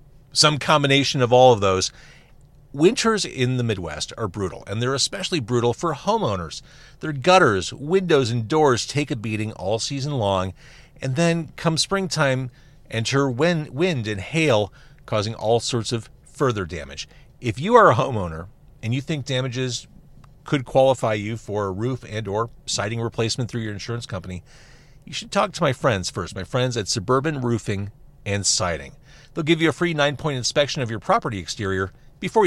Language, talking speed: English, 170 wpm